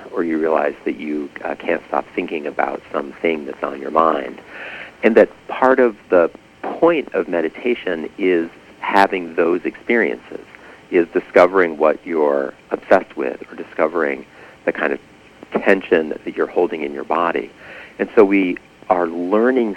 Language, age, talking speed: English, 50-69, 155 wpm